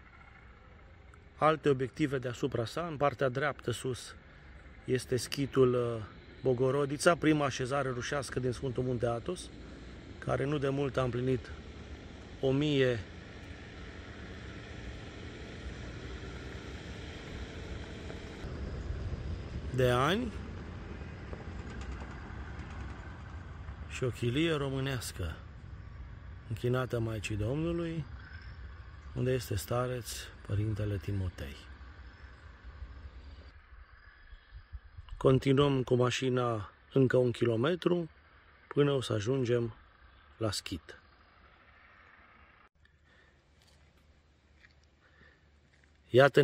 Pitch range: 80-130 Hz